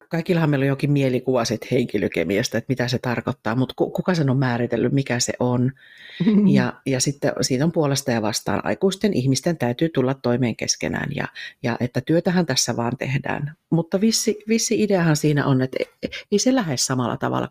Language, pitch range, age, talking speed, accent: Finnish, 125-155 Hz, 40-59, 180 wpm, native